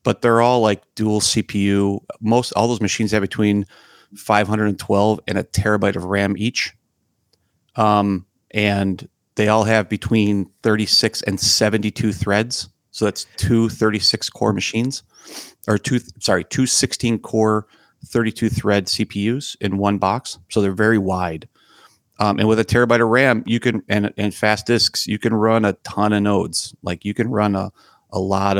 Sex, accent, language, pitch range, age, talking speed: male, American, English, 95-110 Hz, 30-49, 165 wpm